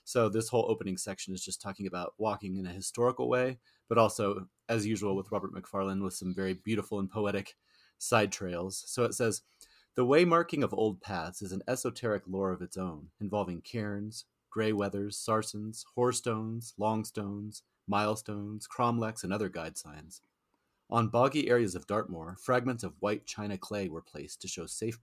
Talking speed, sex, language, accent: 175 wpm, male, English, American